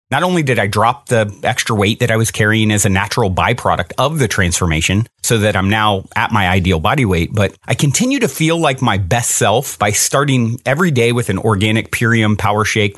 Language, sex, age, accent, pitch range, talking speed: English, male, 30-49, American, 100-140 Hz, 215 wpm